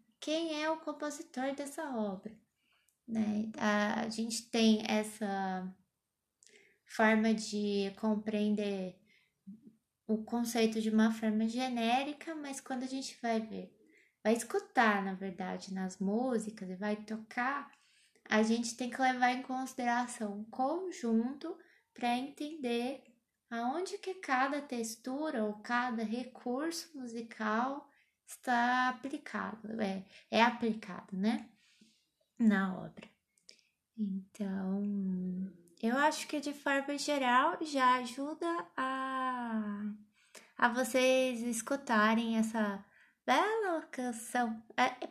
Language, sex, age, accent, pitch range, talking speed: Portuguese, female, 20-39, Brazilian, 215-265 Hz, 105 wpm